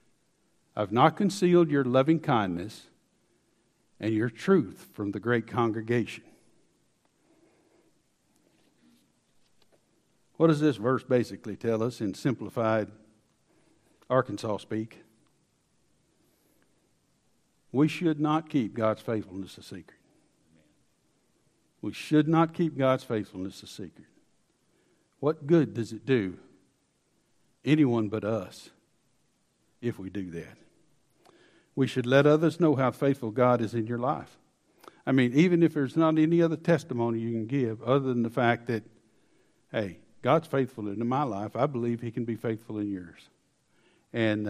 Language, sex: English, male